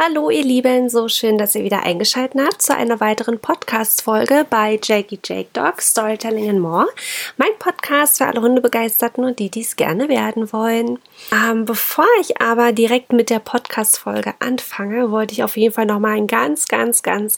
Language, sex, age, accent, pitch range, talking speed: German, female, 20-39, German, 220-255 Hz, 175 wpm